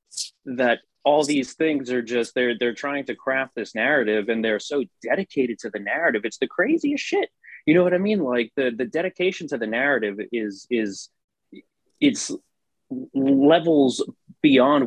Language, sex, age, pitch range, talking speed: English, male, 30-49, 105-135 Hz, 165 wpm